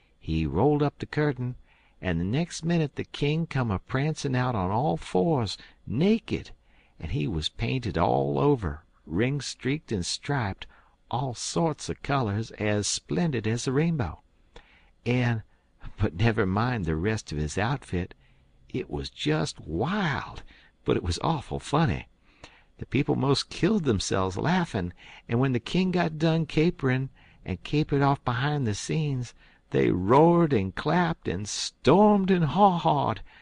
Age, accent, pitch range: 60-79, American, 90-140 Hz